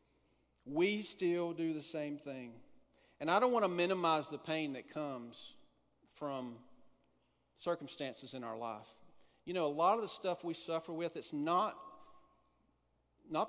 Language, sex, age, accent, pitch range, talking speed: English, male, 40-59, American, 125-165 Hz, 150 wpm